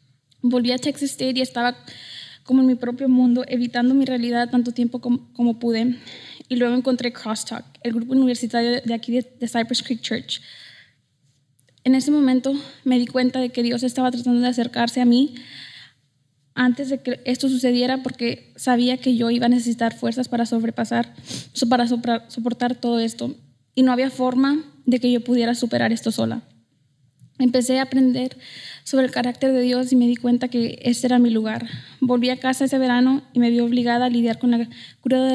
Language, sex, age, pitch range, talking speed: English, female, 10-29, 230-255 Hz, 185 wpm